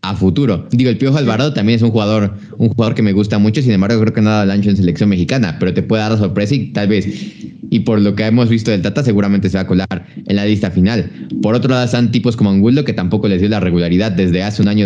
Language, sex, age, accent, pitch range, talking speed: Spanish, male, 20-39, Mexican, 95-115 Hz, 280 wpm